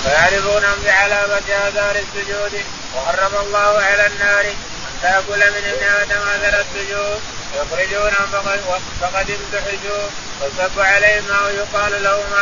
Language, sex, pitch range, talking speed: Arabic, male, 195-200 Hz, 110 wpm